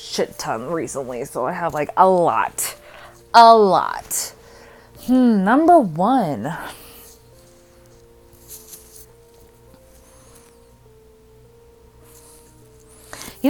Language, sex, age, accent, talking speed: English, female, 20-39, American, 65 wpm